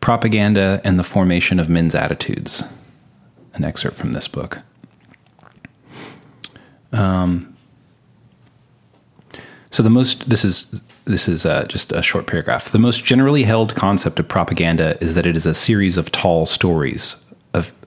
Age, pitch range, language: 30-49, 85-115 Hz, English